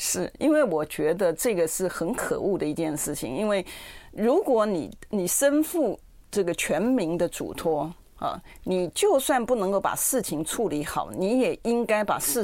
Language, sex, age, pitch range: Chinese, female, 40-59, 170-245 Hz